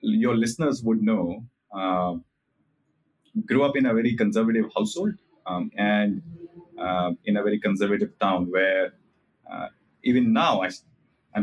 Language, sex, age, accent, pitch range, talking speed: English, male, 30-49, Indian, 95-125 Hz, 135 wpm